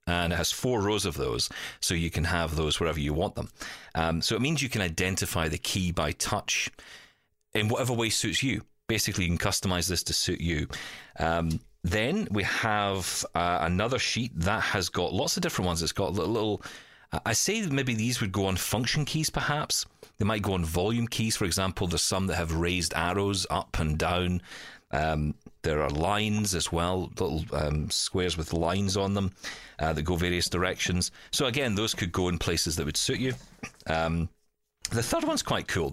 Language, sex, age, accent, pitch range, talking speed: English, male, 40-59, British, 85-110 Hz, 200 wpm